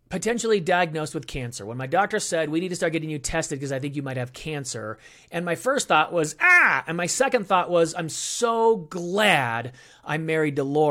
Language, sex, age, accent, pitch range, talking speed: English, male, 30-49, American, 120-180 Hz, 215 wpm